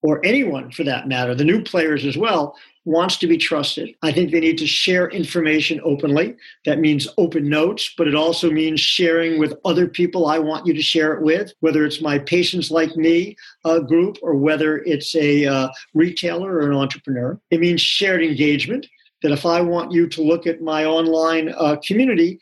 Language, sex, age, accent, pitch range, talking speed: English, male, 50-69, American, 150-180 Hz, 195 wpm